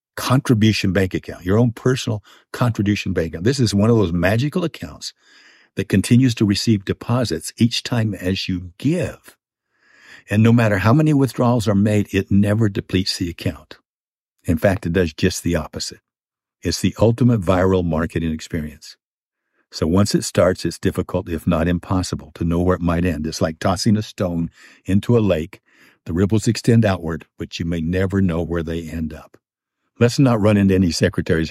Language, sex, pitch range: English, male, 80-105 Hz